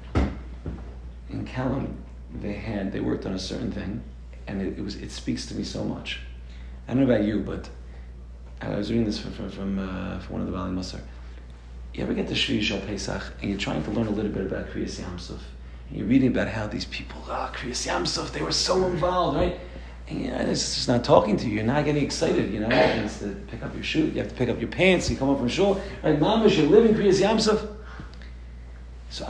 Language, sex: English, male